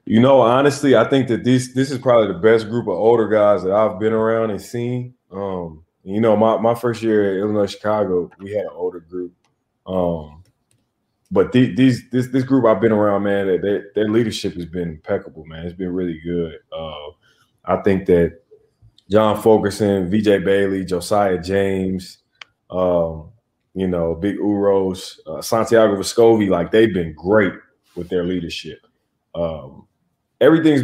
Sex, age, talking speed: male, 20-39, 165 wpm